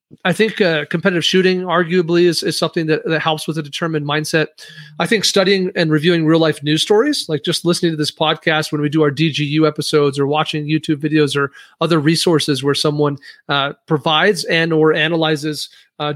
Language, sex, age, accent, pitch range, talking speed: English, male, 40-59, American, 150-180 Hz, 190 wpm